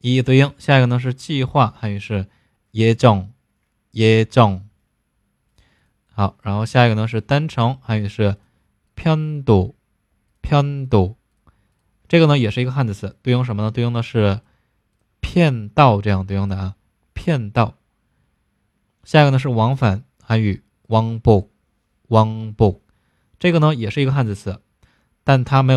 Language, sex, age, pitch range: Chinese, male, 20-39, 105-130 Hz